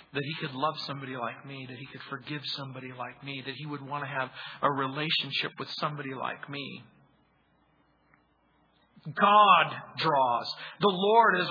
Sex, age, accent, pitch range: male, 50-69, American, 160-230 Hz